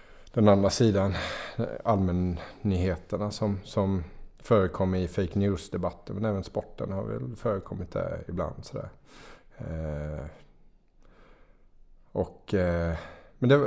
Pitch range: 90-115 Hz